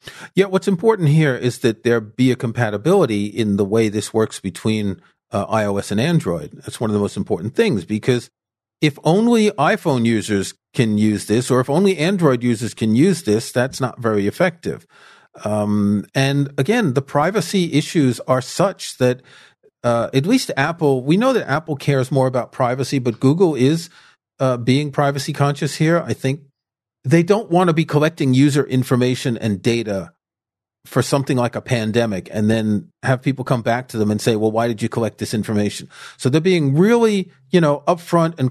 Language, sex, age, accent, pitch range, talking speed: English, male, 40-59, American, 115-155 Hz, 185 wpm